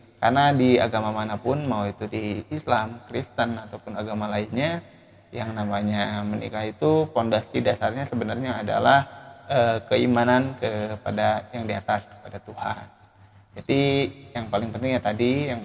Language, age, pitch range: Indonesian, 20-39, 105-125 Hz